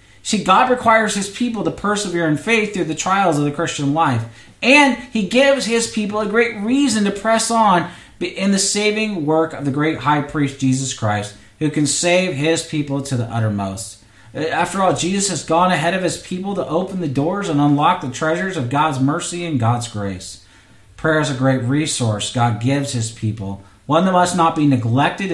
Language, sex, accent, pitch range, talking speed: English, male, American, 120-175 Hz, 200 wpm